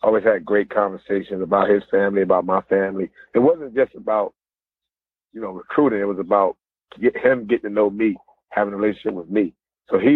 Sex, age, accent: male, 40-59, American